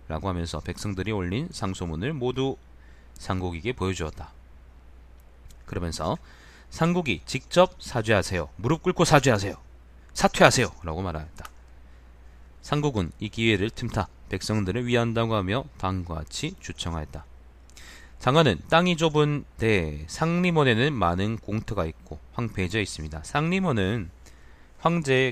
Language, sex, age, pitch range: Korean, male, 30-49, 70-115 Hz